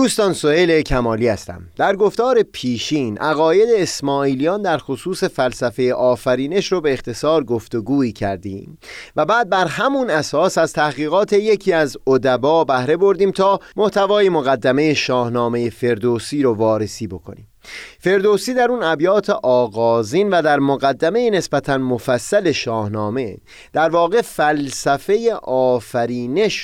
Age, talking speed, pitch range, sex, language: 30-49, 120 wpm, 120-185 Hz, male, Persian